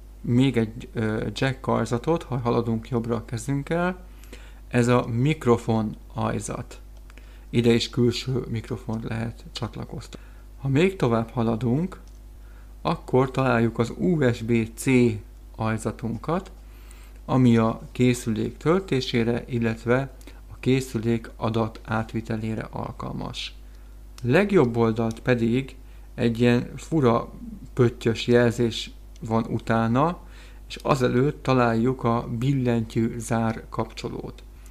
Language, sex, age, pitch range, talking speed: Hungarian, male, 50-69, 115-125 Hz, 90 wpm